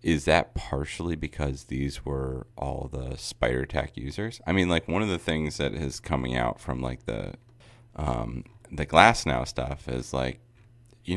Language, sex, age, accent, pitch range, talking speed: English, male, 30-49, American, 65-90 Hz, 175 wpm